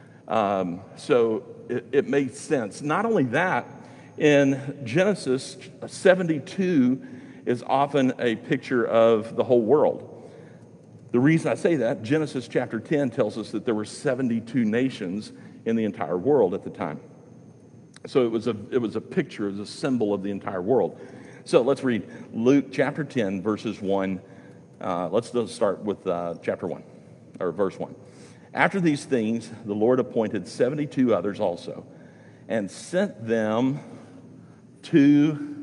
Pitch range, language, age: 115-145 Hz, English, 50-69